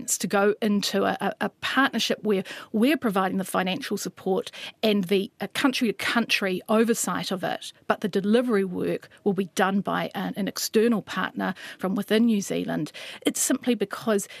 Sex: female